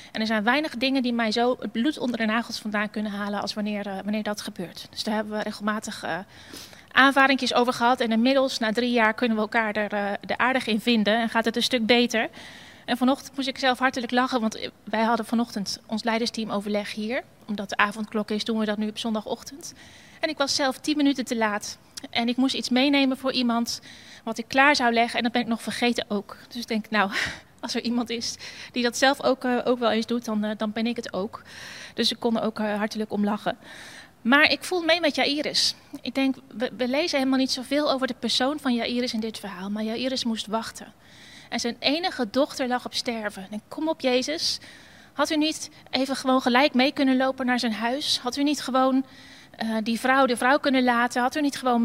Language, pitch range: Dutch, 220-265 Hz